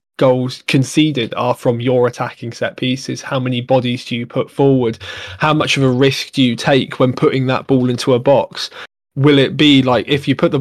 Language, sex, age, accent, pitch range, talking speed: English, male, 20-39, British, 120-140 Hz, 215 wpm